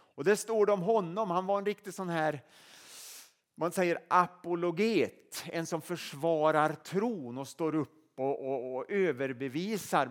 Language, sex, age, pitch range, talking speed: Swedish, male, 30-49, 140-190 Hz, 155 wpm